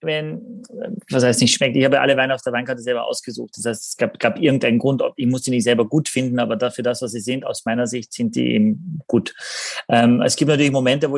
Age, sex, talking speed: 30-49, male, 260 wpm